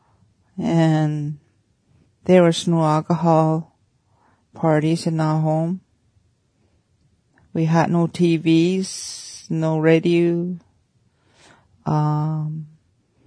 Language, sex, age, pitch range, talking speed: English, female, 40-59, 150-175 Hz, 70 wpm